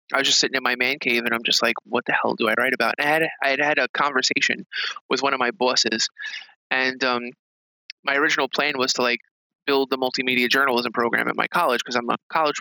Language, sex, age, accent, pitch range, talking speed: English, male, 20-39, American, 120-135 Hz, 245 wpm